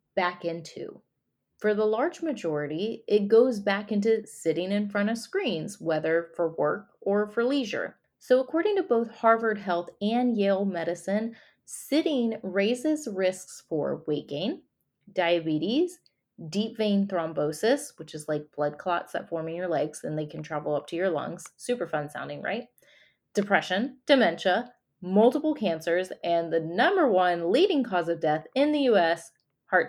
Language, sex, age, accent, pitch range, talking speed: English, female, 30-49, American, 175-235 Hz, 155 wpm